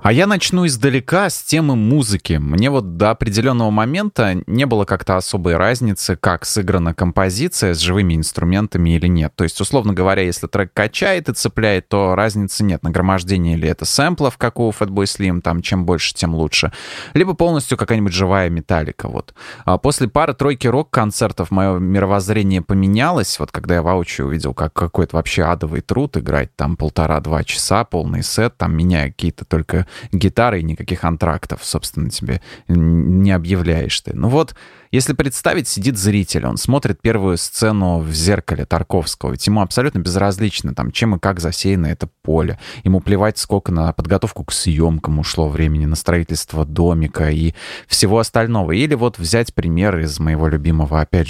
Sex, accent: male, native